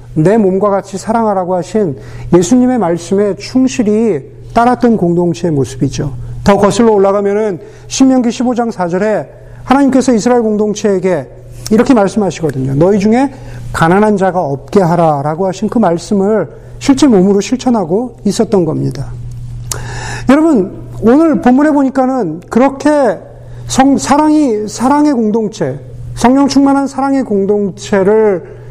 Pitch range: 145-230 Hz